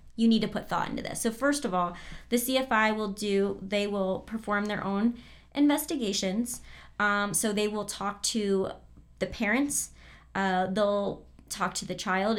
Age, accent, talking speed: 30-49, American, 170 wpm